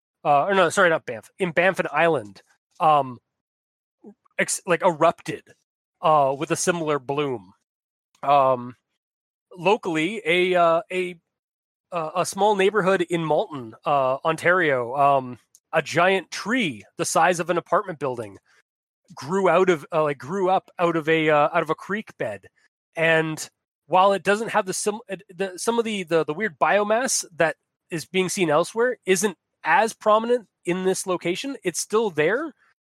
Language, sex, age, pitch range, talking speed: English, male, 30-49, 155-195 Hz, 155 wpm